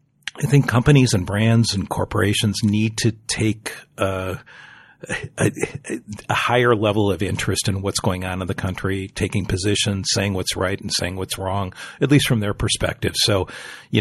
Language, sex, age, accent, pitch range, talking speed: English, male, 40-59, American, 95-115 Hz, 165 wpm